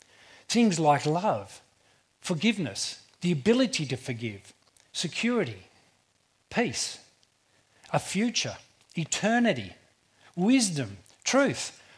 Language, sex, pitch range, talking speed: English, male, 125-165 Hz, 75 wpm